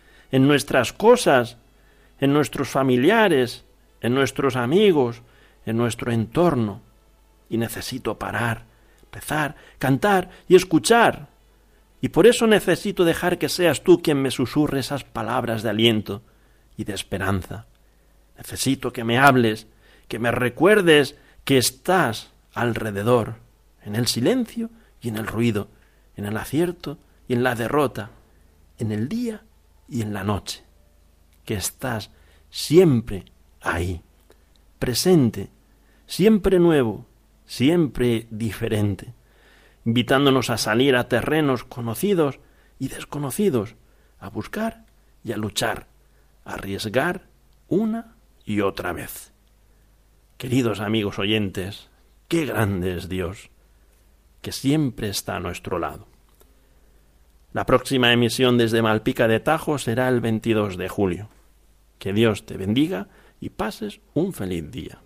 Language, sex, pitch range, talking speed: Spanish, male, 105-140 Hz, 120 wpm